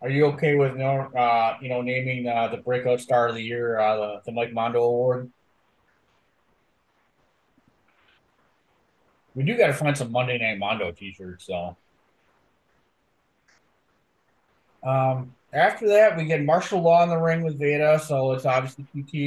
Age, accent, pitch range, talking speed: 30-49, American, 125-145 Hz, 150 wpm